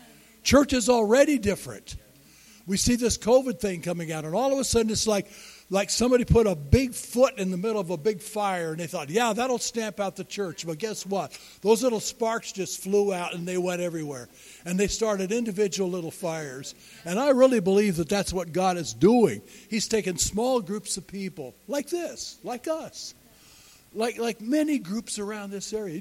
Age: 60-79